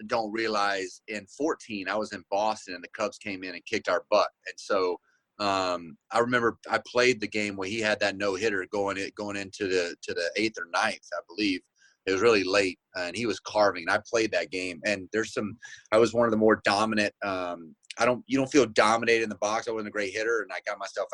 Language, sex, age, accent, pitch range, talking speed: English, male, 30-49, American, 95-115 Hz, 245 wpm